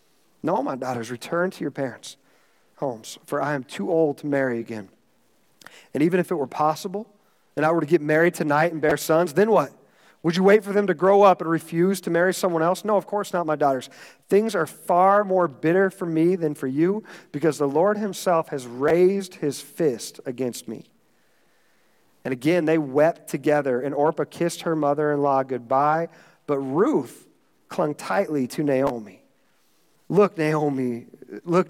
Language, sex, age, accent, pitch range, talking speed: English, male, 40-59, American, 140-170 Hz, 180 wpm